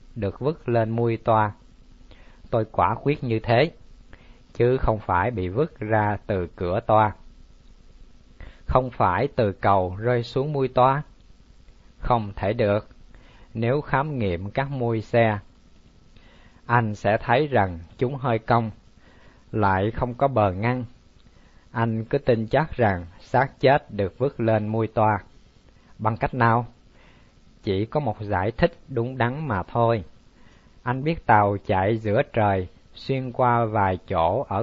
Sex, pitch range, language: male, 100-125 Hz, Vietnamese